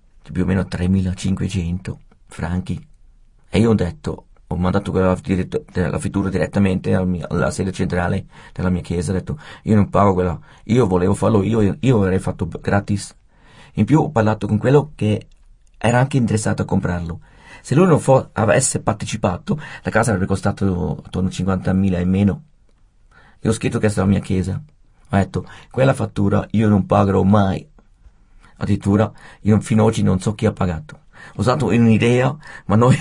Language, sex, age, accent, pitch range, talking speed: Italian, male, 40-59, native, 95-110 Hz, 175 wpm